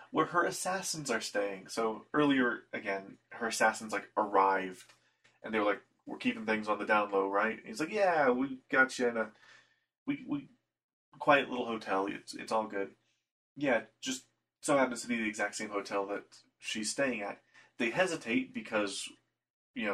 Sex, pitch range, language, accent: male, 100-150 Hz, English, American